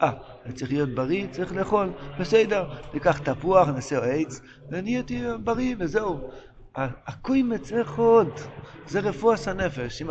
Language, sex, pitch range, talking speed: Hebrew, male, 140-195 Hz, 135 wpm